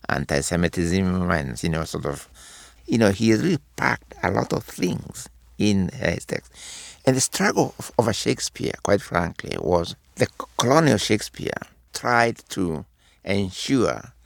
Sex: male